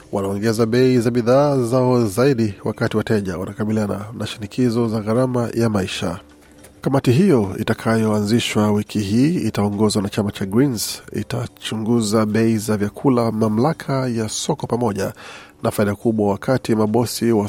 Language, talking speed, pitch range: Swahili, 135 wpm, 110-125 Hz